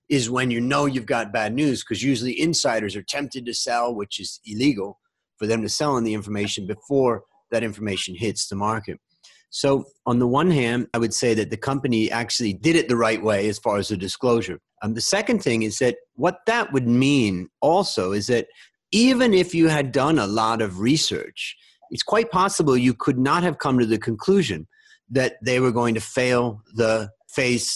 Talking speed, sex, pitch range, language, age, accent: 200 wpm, male, 110-145 Hz, English, 30-49, American